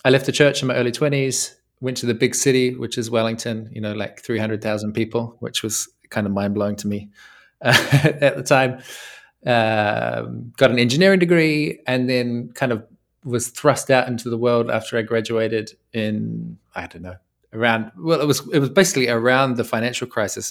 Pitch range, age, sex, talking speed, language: 100-125 Hz, 20-39, male, 190 wpm, English